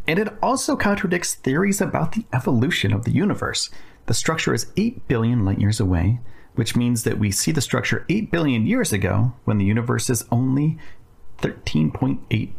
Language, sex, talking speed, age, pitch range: English, male, 170 wpm, 30-49, 105-140 Hz